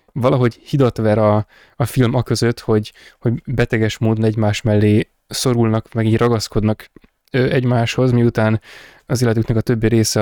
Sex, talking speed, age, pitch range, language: male, 140 wpm, 20-39, 110-125 Hz, Hungarian